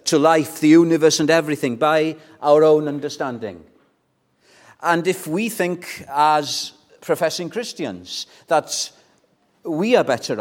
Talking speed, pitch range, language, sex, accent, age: 120 wpm, 140-195 Hz, English, male, British, 50-69